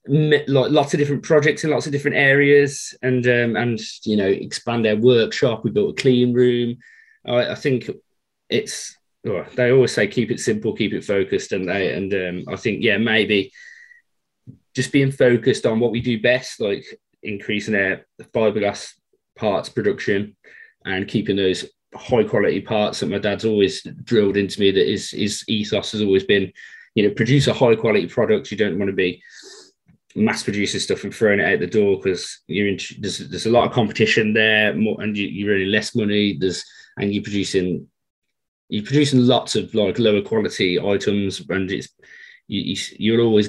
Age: 20-39